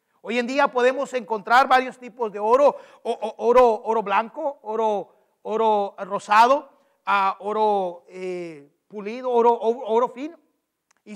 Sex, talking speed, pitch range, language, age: male, 140 wpm, 200-255 Hz, English, 40-59